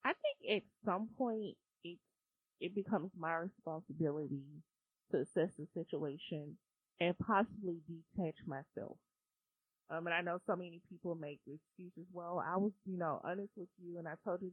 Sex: female